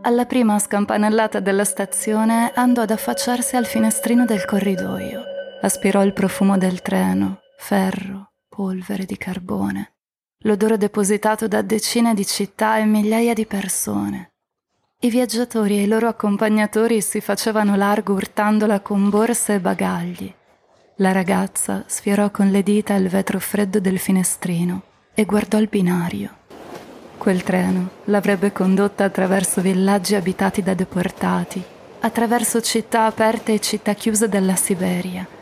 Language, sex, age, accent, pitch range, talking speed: Italian, female, 20-39, native, 190-220 Hz, 130 wpm